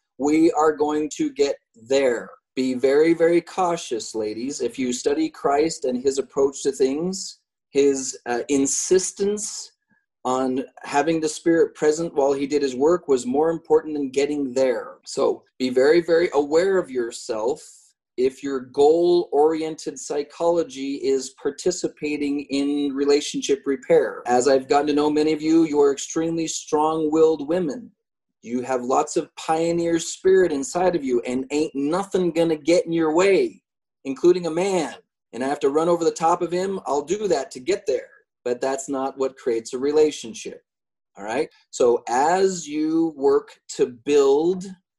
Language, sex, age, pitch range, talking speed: English, male, 30-49, 140-190 Hz, 160 wpm